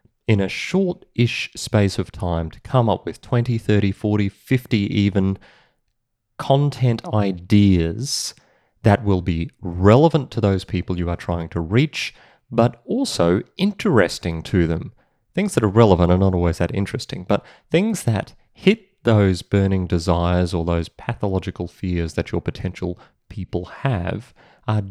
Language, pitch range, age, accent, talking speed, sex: English, 90-120 Hz, 30-49, Australian, 145 wpm, male